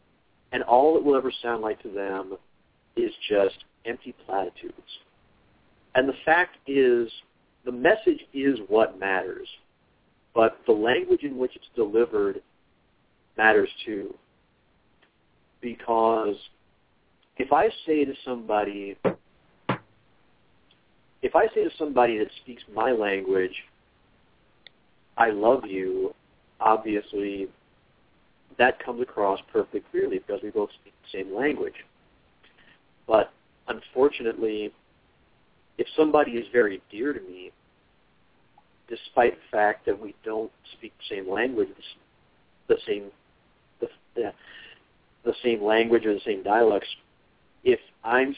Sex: male